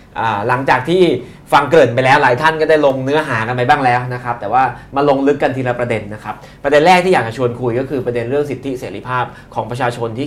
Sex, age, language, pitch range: male, 20-39, Thai, 120-150 Hz